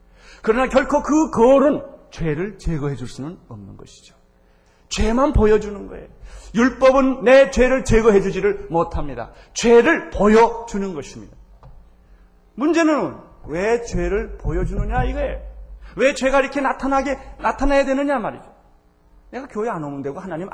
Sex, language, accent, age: male, Korean, native, 40-59